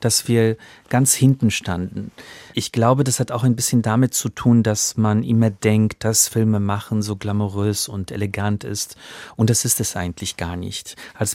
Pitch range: 110-130 Hz